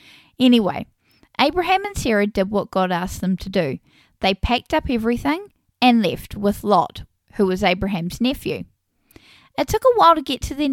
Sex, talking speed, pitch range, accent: female, 175 wpm, 195-260 Hz, Australian